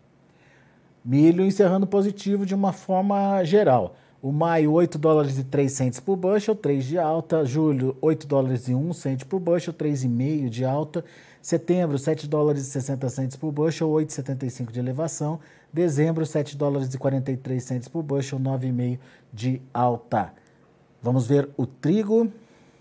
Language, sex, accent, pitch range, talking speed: Portuguese, male, Brazilian, 130-160 Hz, 145 wpm